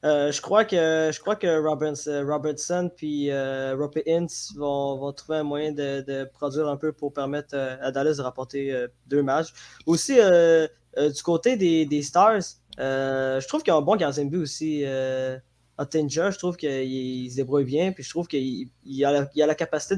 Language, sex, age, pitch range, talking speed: French, male, 20-39, 135-160 Hz, 205 wpm